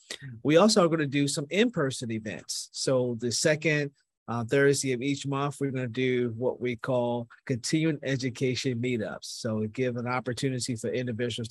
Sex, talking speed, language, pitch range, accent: male, 180 wpm, English, 120-140 Hz, American